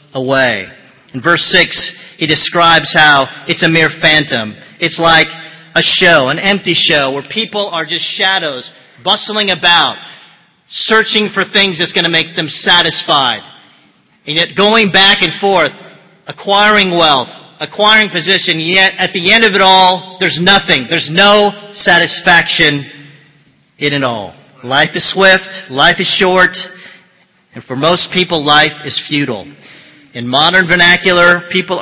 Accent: American